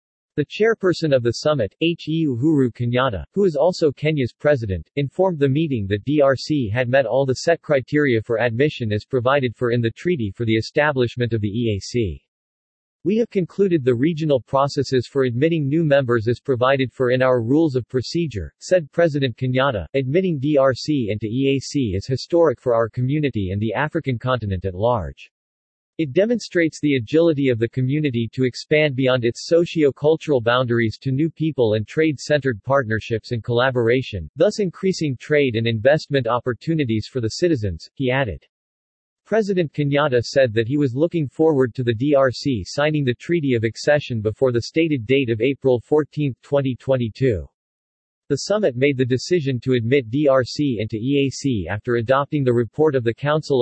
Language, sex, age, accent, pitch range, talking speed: English, male, 50-69, American, 120-150 Hz, 165 wpm